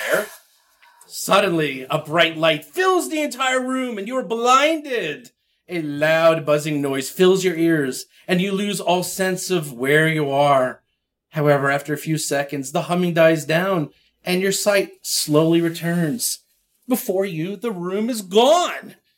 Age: 40-59